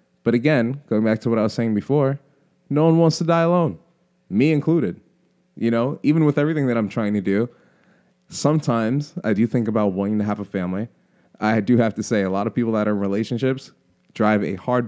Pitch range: 105-140 Hz